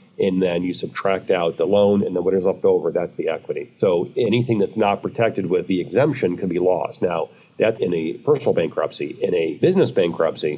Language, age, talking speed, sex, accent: English, 40-59, 210 wpm, male, American